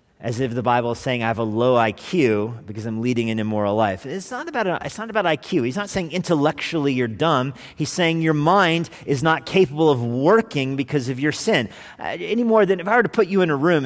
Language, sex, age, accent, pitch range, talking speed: English, male, 40-59, American, 125-175 Hz, 245 wpm